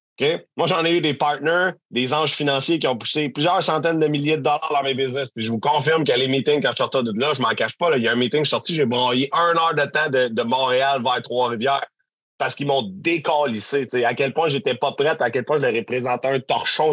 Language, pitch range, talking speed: French, 120-150 Hz, 265 wpm